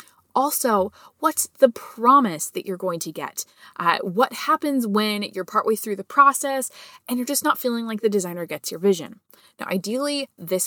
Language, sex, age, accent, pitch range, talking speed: German, female, 20-39, American, 185-260 Hz, 180 wpm